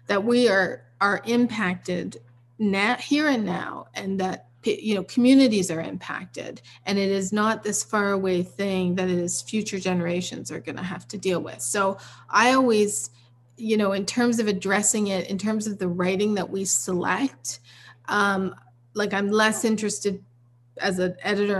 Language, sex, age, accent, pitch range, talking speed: English, female, 30-49, American, 180-205 Hz, 170 wpm